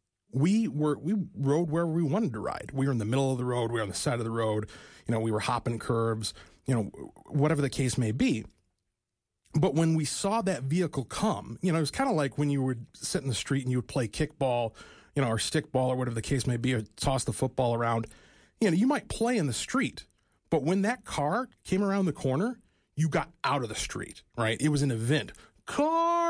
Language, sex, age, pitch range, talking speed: English, male, 30-49, 120-165 Hz, 245 wpm